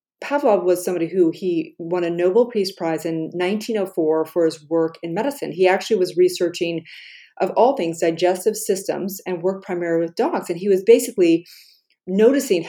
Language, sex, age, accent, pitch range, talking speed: English, female, 30-49, American, 170-210 Hz, 170 wpm